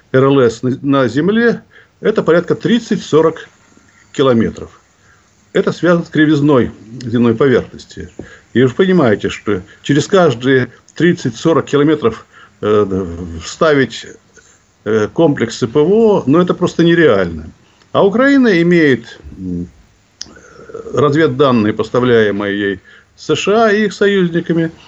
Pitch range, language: 110-180 Hz, Russian